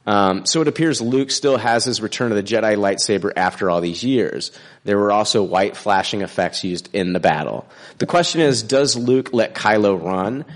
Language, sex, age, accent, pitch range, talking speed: English, male, 30-49, American, 95-120 Hz, 200 wpm